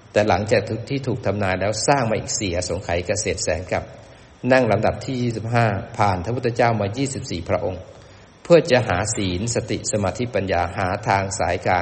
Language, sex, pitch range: Thai, male, 95-115 Hz